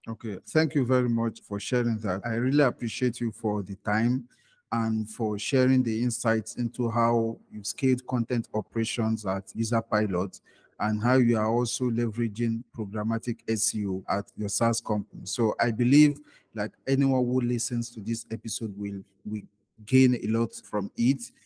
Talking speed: 160 wpm